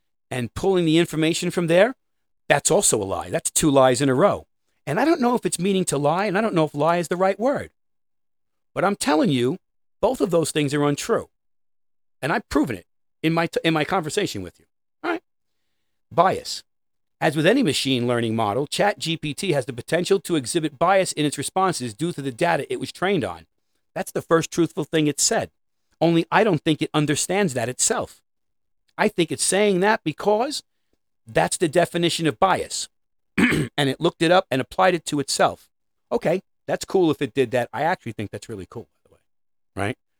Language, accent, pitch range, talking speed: English, American, 110-170 Hz, 205 wpm